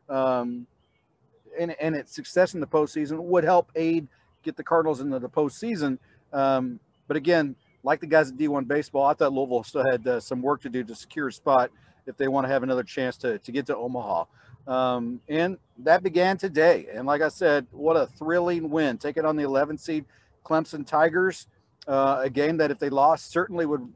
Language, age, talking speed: English, 40-59, 205 wpm